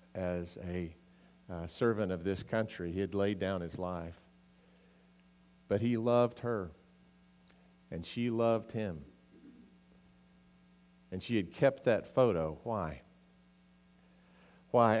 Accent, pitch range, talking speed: American, 80-120 Hz, 115 wpm